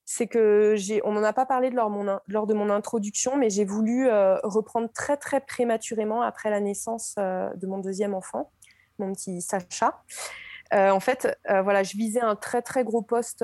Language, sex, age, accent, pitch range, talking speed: French, female, 20-39, French, 195-230 Hz, 205 wpm